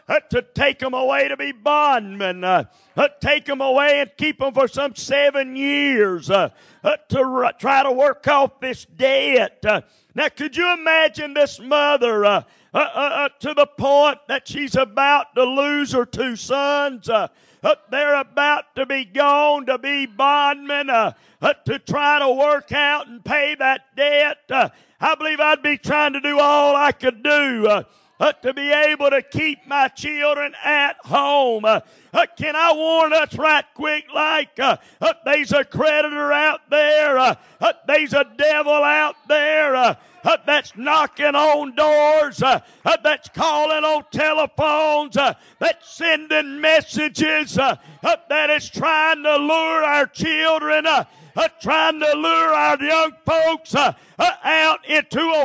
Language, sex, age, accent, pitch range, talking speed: English, male, 50-69, American, 275-305 Hz, 165 wpm